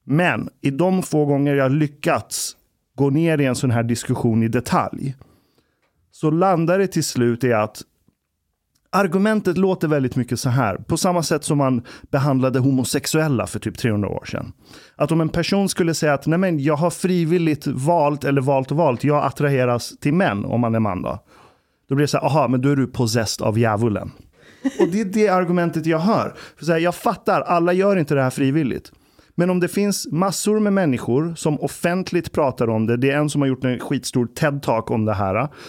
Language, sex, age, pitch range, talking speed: Swedish, male, 30-49, 130-175 Hz, 205 wpm